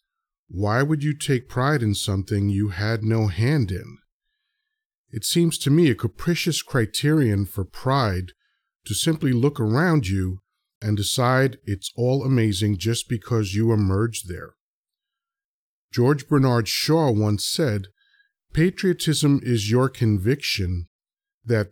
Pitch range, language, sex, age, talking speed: 105-145 Hz, English, male, 40-59, 125 wpm